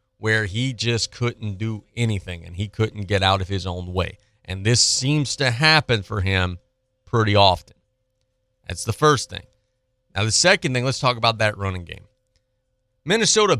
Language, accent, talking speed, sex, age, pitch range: English, American, 170 wpm, male, 30-49, 100-130 Hz